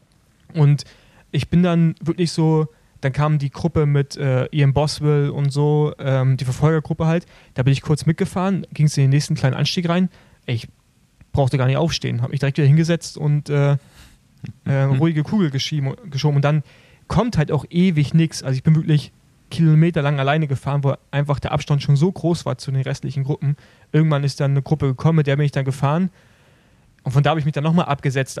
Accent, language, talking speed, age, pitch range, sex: German, German, 205 wpm, 30-49, 135-155 Hz, male